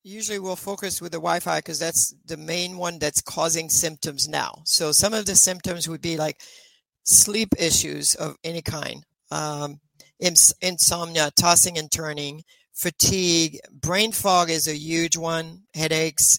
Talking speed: 150 wpm